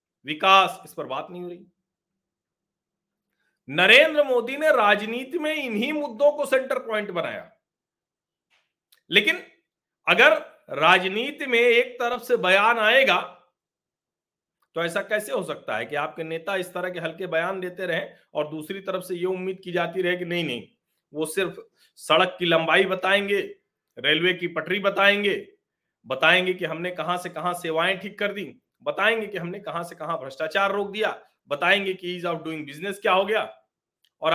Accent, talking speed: native, 165 wpm